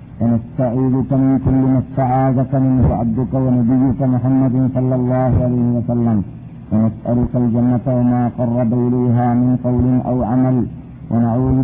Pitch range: 120-140 Hz